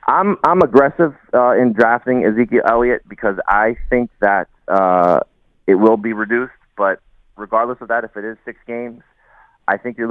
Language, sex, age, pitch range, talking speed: English, male, 20-39, 95-110 Hz, 170 wpm